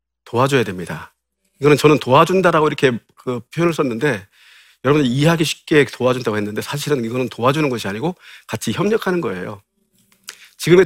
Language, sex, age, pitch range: Korean, male, 40-59, 110-165 Hz